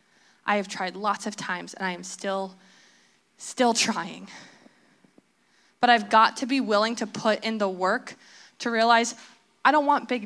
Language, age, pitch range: English, 20-39, 200-235 Hz